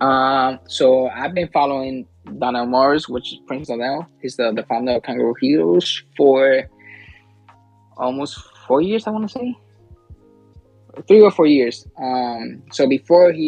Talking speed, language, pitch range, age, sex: 155 wpm, English, 120-140 Hz, 20-39, male